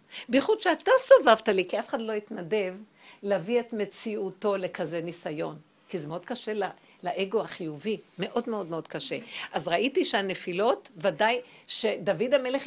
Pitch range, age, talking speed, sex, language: 190-275 Hz, 60-79, 140 wpm, female, Hebrew